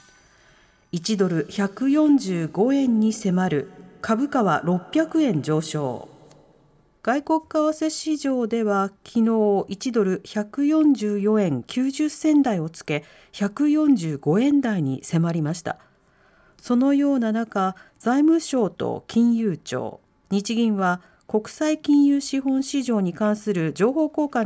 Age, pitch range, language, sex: 40-59, 190-270 Hz, Japanese, female